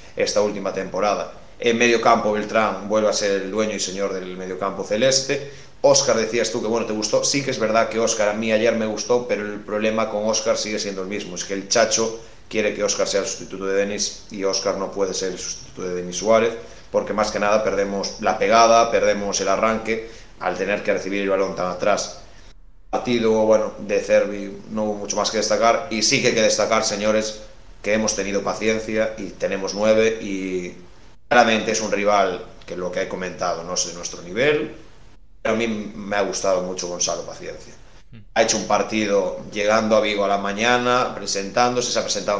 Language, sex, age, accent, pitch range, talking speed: Spanish, male, 30-49, Spanish, 100-115 Hz, 210 wpm